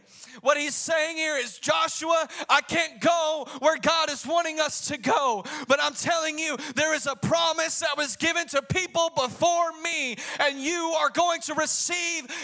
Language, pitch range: English, 270-335 Hz